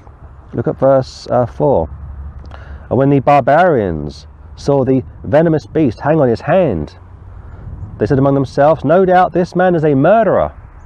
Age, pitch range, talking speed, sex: 40-59, 95-140 Hz, 155 wpm, male